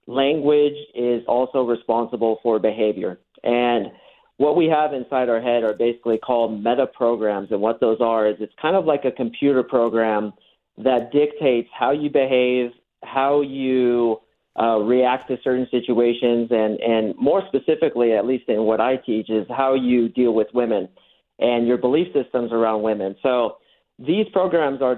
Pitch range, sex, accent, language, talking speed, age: 115-130 Hz, male, American, English, 165 wpm, 40-59